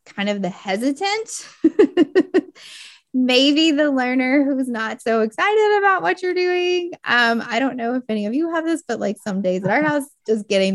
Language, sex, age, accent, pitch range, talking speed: English, female, 20-39, American, 200-275 Hz, 190 wpm